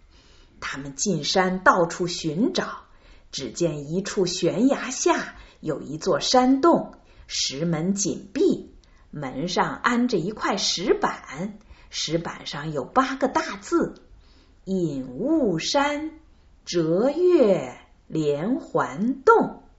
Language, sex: Chinese, female